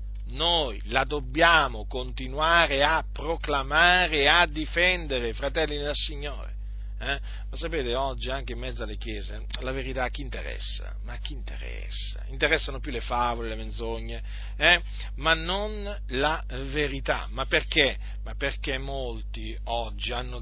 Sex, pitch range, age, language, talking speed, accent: male, 115-170 Hz, 40-59, Italian, 140 wpm, native